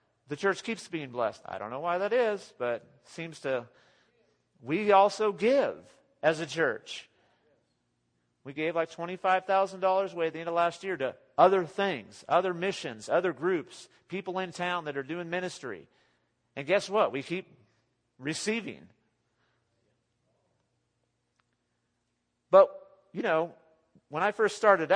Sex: male